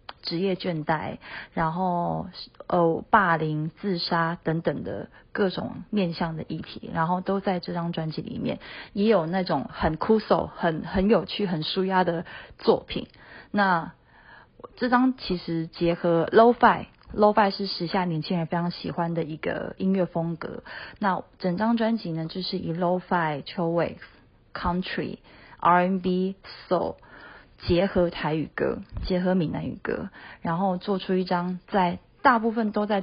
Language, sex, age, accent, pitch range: Japanese, female, 30-49, Chinese, 170-205 Hz